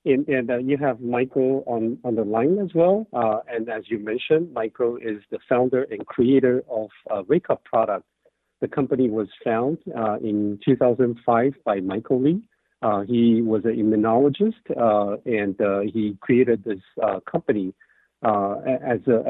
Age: 50-69